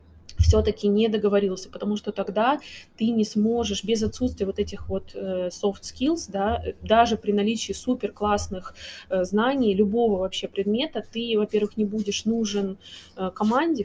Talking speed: 140 wpm